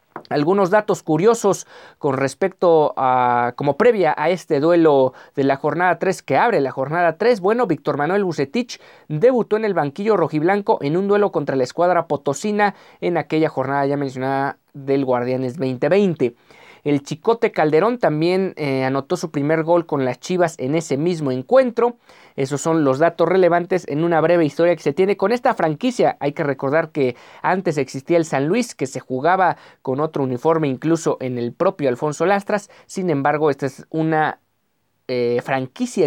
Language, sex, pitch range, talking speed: Spanish, male, 135-180 Hz, 170 wpm